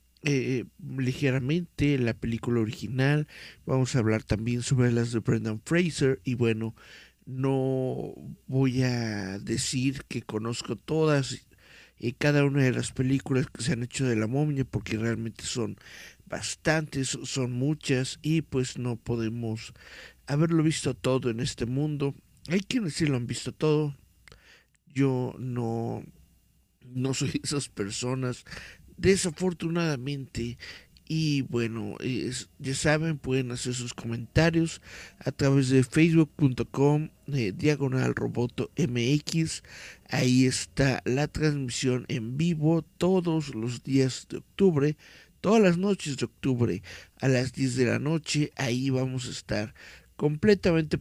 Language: Spanish